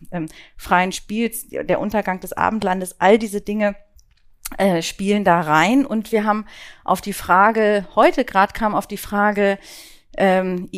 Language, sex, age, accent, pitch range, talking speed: German, female, 40-59, German, 185-215 Hz, 145 wpm